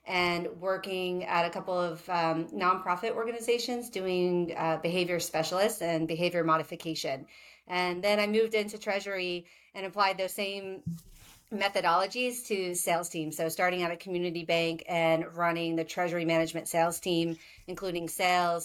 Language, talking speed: English, 145 wpm